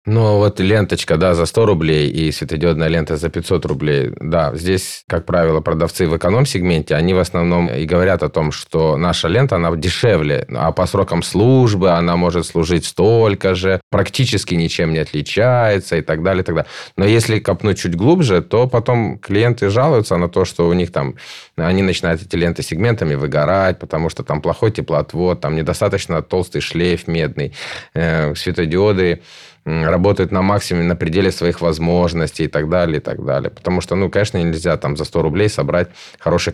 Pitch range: 85-100 Hz